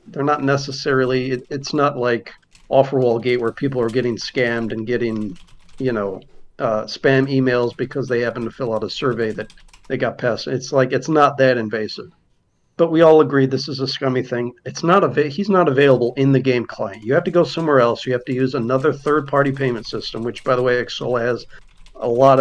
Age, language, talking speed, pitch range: 50-69, English, 220 wpm, 120-140 Hz